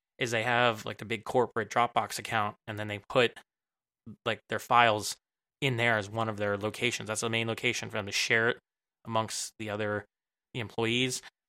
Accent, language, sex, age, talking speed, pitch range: American, English, male, 20-39, 190 wpm, 110-130 Hz